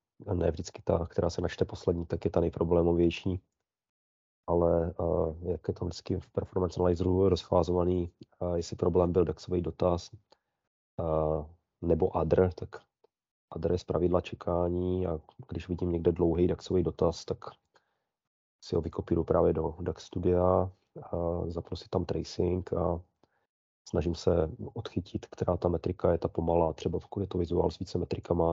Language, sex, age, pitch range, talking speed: Czech, male, 30-49, 85-90 Hz, 155 wpm